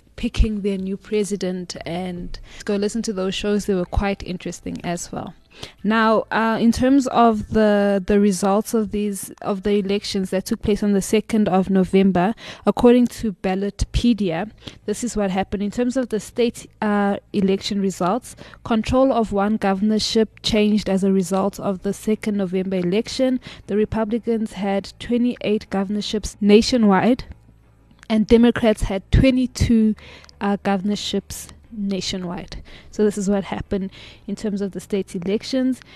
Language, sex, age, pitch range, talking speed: English, female, 20-39, 195-220 Hz, 145 wpm